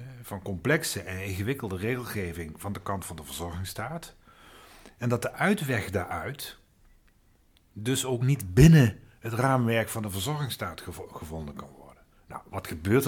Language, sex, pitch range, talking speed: Dutch, male, 95-120 Hz, 140 wpm